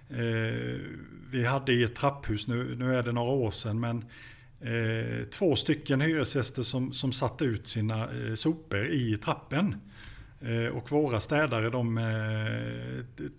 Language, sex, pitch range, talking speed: Swedish, male, 115-145 Hz, 150 wpm